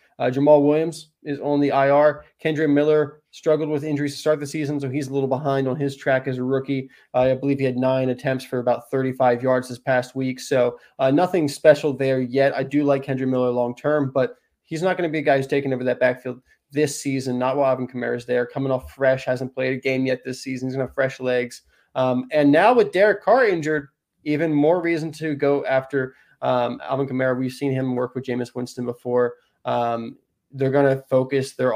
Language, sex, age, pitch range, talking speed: English, male, 20-39, 125-140 Hz, 225 wpm